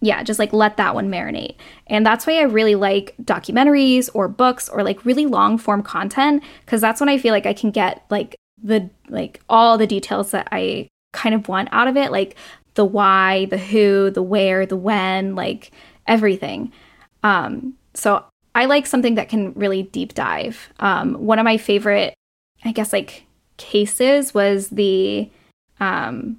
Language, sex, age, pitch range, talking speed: English, female, 10-29, 205-245 Hz, 175 wpm